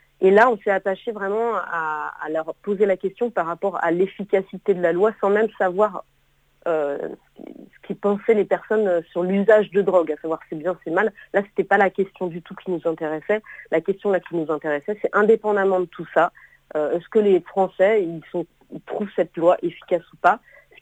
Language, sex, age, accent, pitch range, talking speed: French, female, 40-59, French, 165-200 Hz, 210 wpm